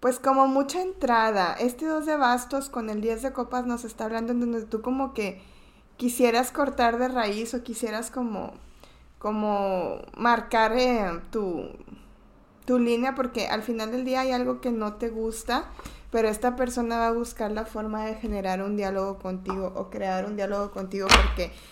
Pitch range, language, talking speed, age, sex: 210-250 Hz, Spanish, 175 wpm, 20-39, female